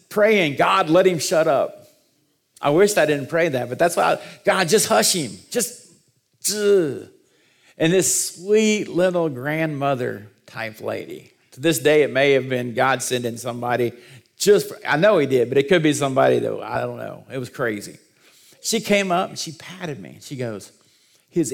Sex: male